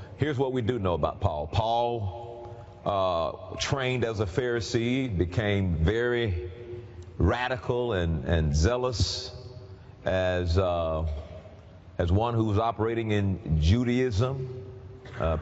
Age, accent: 40-59, American